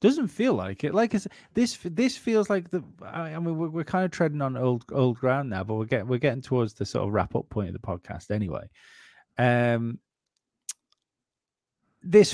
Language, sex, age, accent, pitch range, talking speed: English, male, 30-49, British, 105-140 Hz, 200 wpm